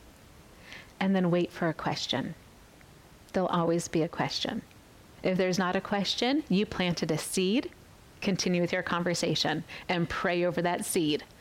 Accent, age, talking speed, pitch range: American, 30-49, 155 wpm, 170-200 Hz